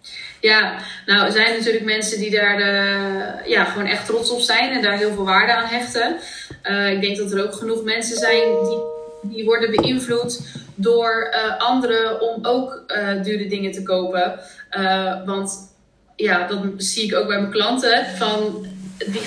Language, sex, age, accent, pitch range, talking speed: Dutch, female, 20-39, Dutch, 200-225 Hz, 180 wpm